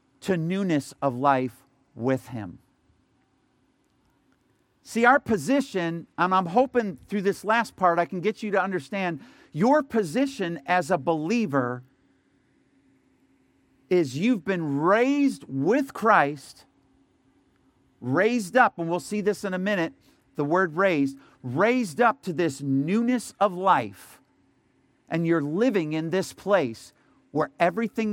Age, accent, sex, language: 50-69, American, male, English